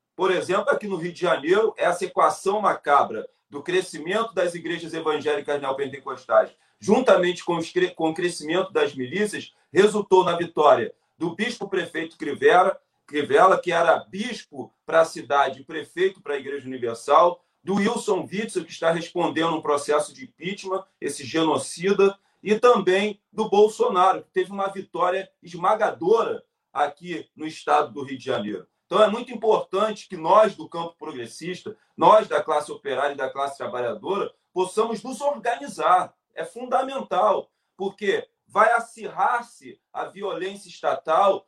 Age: 40-59